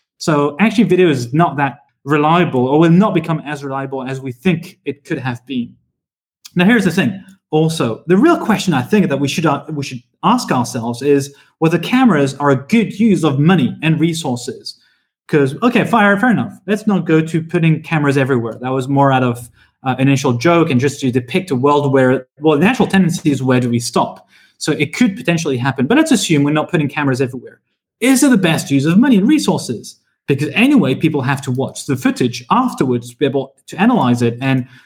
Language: English